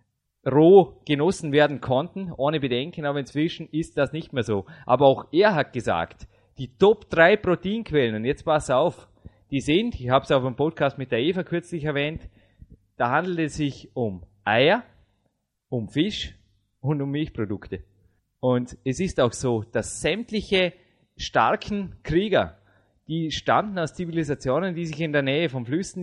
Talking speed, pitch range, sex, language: 160 wpm, 125-160 Hz, male, German